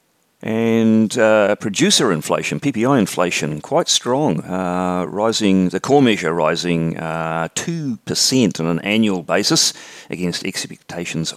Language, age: English, 40-59